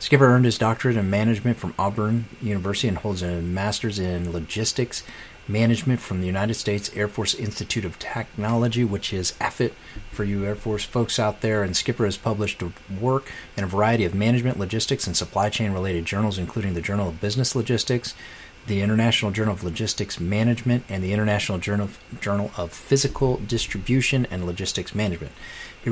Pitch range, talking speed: 95-115 Hz, 175 wpm